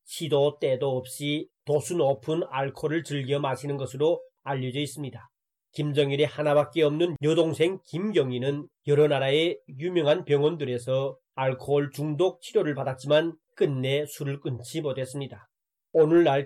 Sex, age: male, 30-49